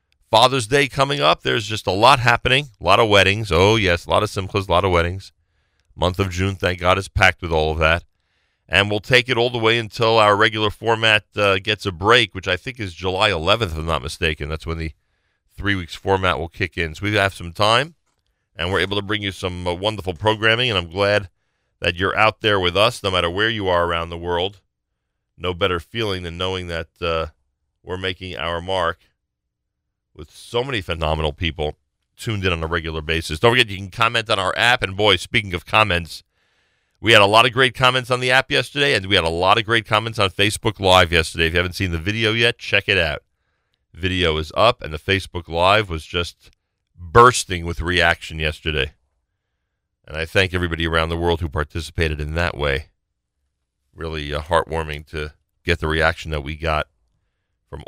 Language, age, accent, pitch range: English, 40-59, American, 80-110 Hz